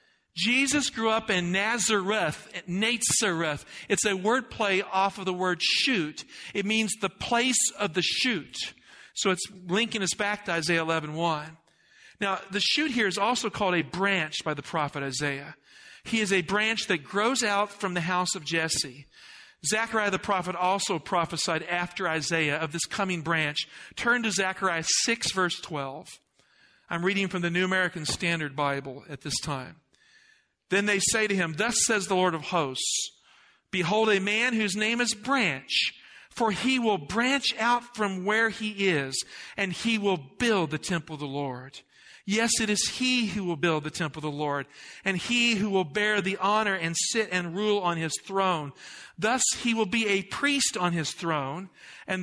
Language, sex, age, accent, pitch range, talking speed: English, male, 50-69, American, 170-220 Hz, 175 wpm